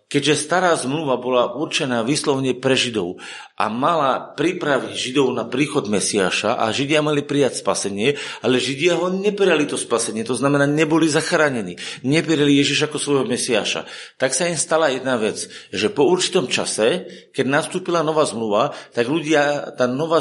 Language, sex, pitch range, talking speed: Slovak, male, 120-150 Hz, 155 wpm